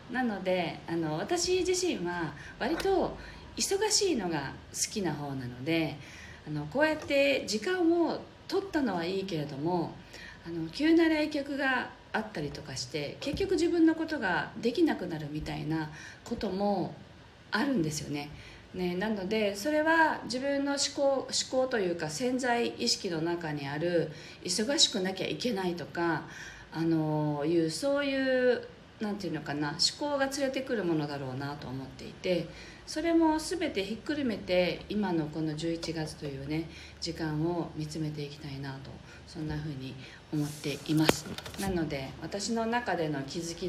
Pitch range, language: 155-240 Hz, Japanese